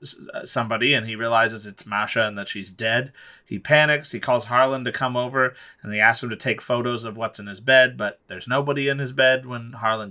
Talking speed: 225 wpm